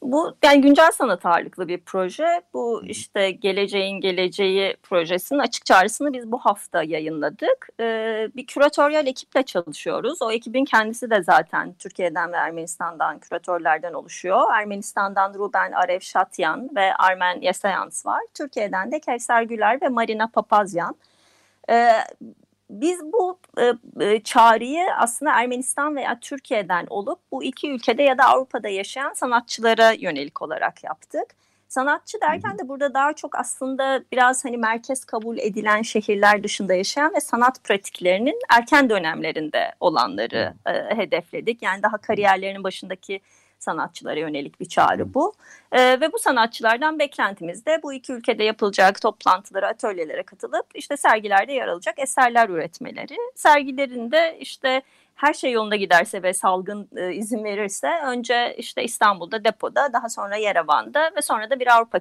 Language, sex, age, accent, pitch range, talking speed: Turkish, female, 30-49, native, 195-275 Hz, 140 wpm